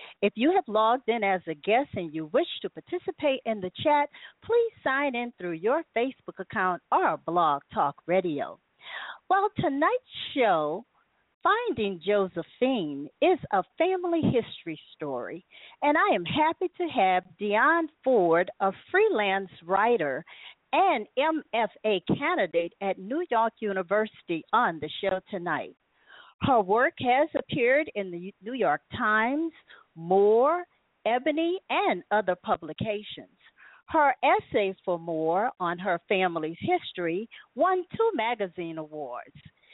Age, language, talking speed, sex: 50-69, English, 130 wpm, female